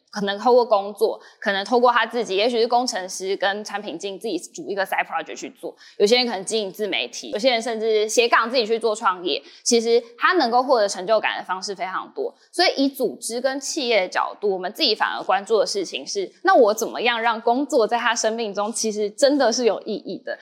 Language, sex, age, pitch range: Chinese, female, 10-29, 210-325 Hz